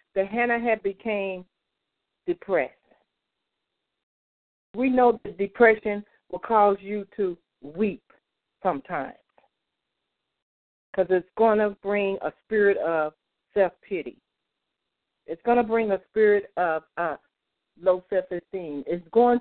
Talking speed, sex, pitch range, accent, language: 110 wpm, female, 160-215 Hz, American, English